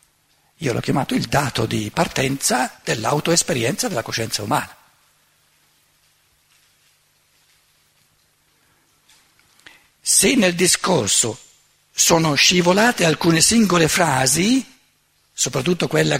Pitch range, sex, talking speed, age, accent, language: 135-195 Hz, male, 80 wpm, 60-79, native, Italian